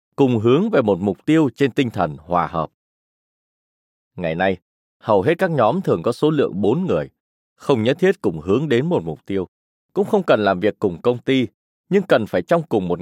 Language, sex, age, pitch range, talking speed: Vietnamese, male, 20-39, 95-160 Hz, 210 wpm